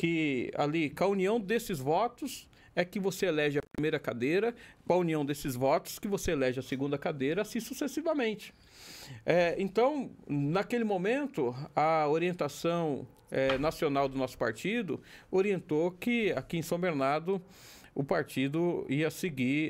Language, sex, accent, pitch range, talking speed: Portuguese, male, Brazilian, 140-195 Hz, 145 wpm